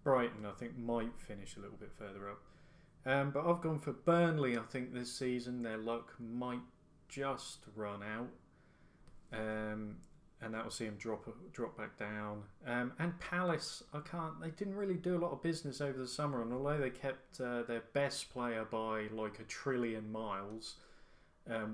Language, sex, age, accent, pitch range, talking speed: English, male, 30-49, British, 110-145 Hz, 180 wpm